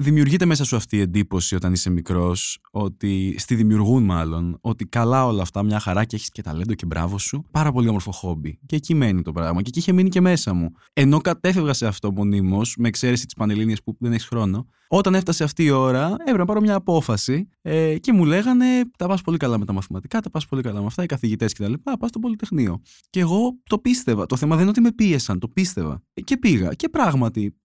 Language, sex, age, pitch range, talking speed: Greek, male, 20-39, 100-165 Hz, 220 wpm